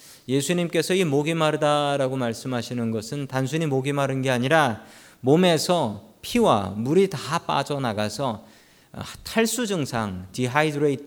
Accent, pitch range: native, 115-160 Hz